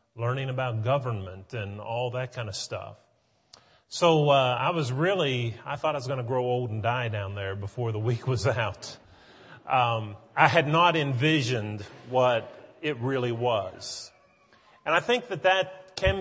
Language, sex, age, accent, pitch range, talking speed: English, male, 40-59, American, 120-150 Hz, 170 wpm